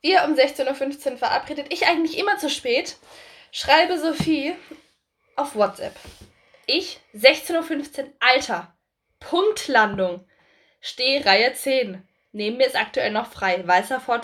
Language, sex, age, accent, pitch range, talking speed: German, female, 10-29, German, 230-315 Hz, 120 wpm